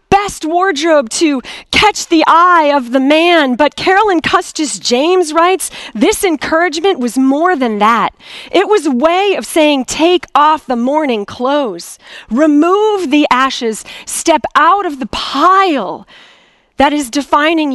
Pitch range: 240-320 Hz